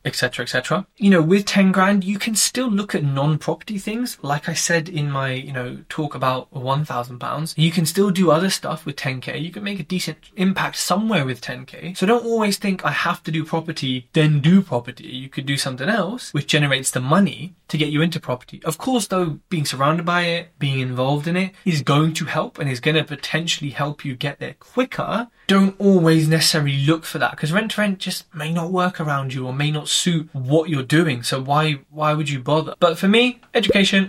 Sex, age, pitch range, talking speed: male, 20-39, 140-180 Hz, 225 wpm